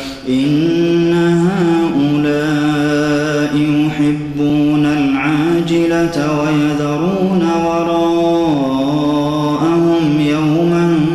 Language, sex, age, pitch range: Arabic, male, 30-49, 140-165 Hz